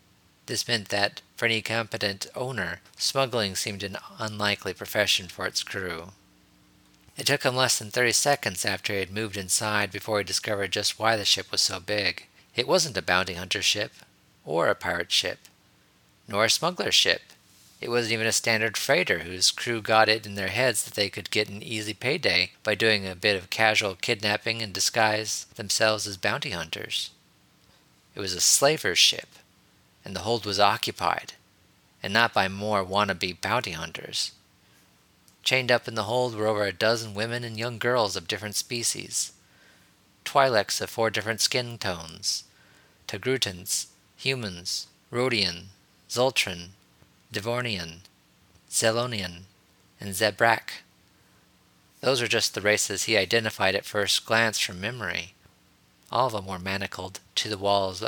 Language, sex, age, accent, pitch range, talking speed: English, male, 40-59, American, 95-115 Hz, 155 wpm